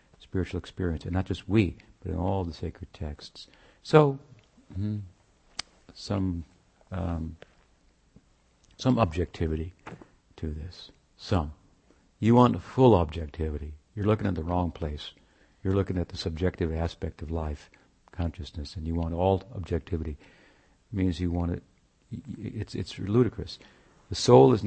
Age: 60-79